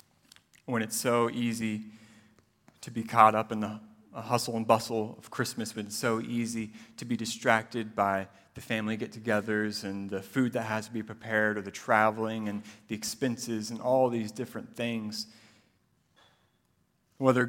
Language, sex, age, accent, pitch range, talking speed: English, male, 30-49, American, 110-125 Hz, 160 wpm